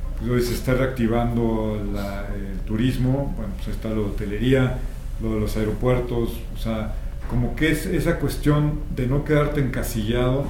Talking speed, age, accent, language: 165 wpm, 50-69, Mexican, Spanish